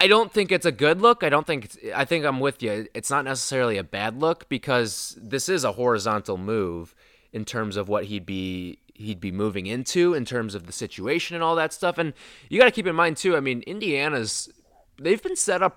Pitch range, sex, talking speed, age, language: 105-140 Hz, male, 235 wpm, 20-39, English